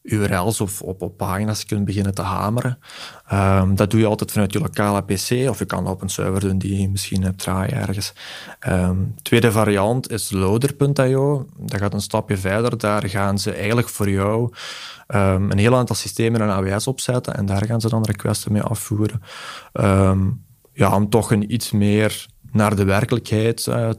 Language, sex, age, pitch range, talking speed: Dutch, male, 20-39, 100-115 Hz, 190 wpm